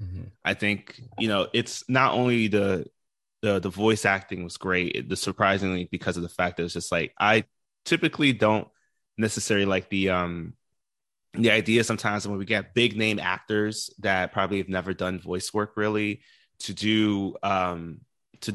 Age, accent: 20-39, American